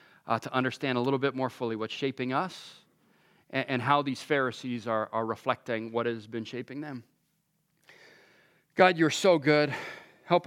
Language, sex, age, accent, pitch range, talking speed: English, male, 40-59, American, 135-180 Hz, 165 wpm